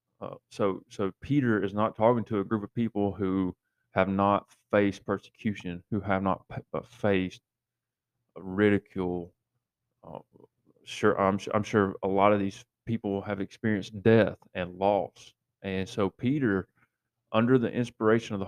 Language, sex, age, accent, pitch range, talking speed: English, male, 30-49, American, 95-110 Hz, 150 wpm